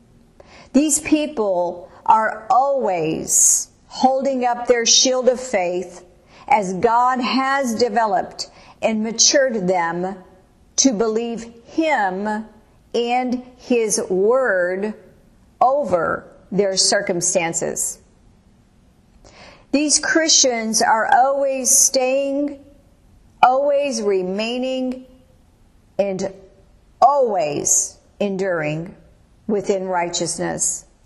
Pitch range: 180-260 Hz